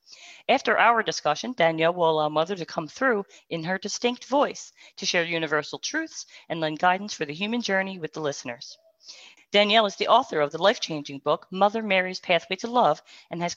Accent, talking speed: American, 190 wpm